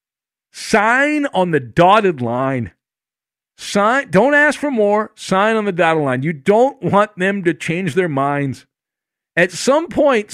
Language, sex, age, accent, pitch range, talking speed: English, male, 50-69, American, 145-210 Hz, 150 wpm